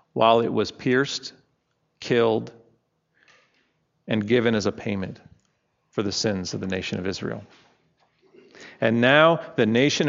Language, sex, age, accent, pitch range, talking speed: English, male, 40-59, American, 115-160 Hz, 130 wpm